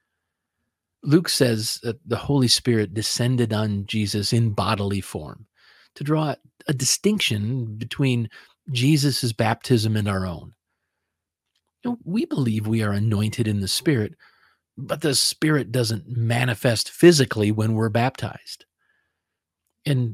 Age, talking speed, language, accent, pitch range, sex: 40-59, 120 wpm, English, American, 105-135 Hz, male